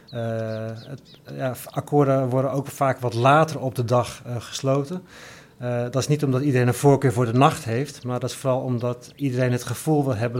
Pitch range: 120-140 Hz